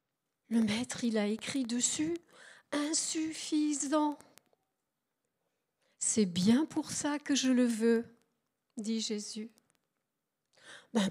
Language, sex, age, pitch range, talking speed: French, female, 40-59, 225-290 Hz, 95 wpm